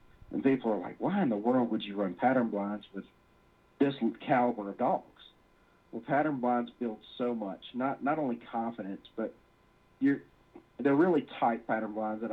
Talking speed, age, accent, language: 175 wpm, 40-59, American, English